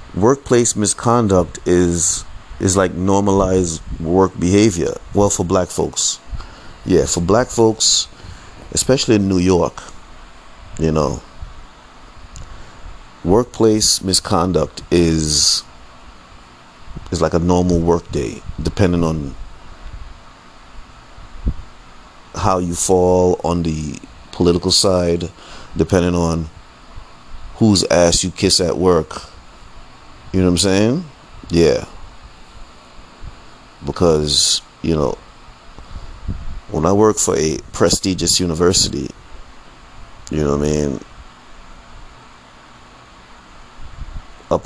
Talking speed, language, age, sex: 95 wpm, English, 30-49, male